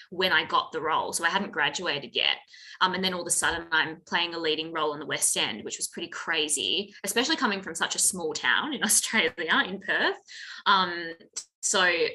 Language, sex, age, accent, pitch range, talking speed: English, female, 20-39, Australian, 175-250 Hz, 210 wpm